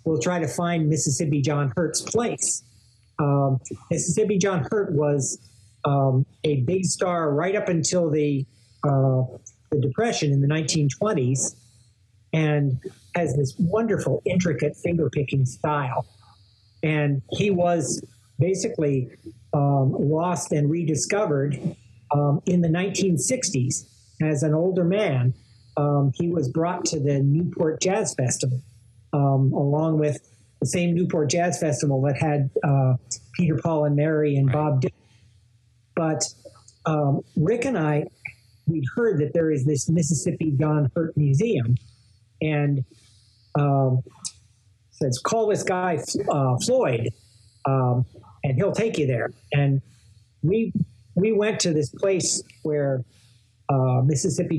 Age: 50-69